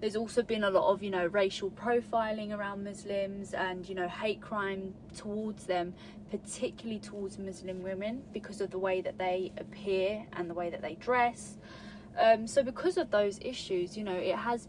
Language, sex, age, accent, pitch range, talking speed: English, female, 20-39, British, 185-210 Hz, 190 wpm